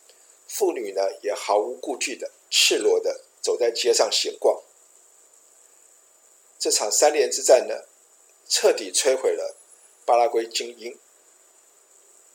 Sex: male